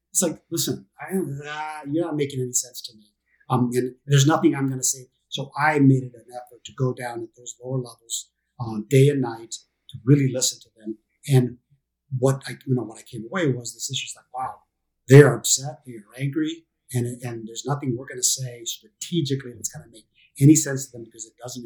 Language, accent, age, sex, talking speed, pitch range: English, American, 50-69, male, 235 wpm, 120-145 Hz